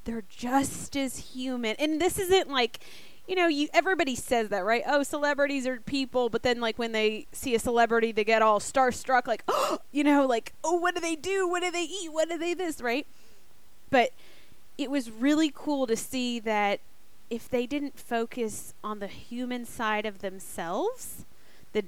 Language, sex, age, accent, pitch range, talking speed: English, female, 20-39, American, 220-290 Hz, 190 wpm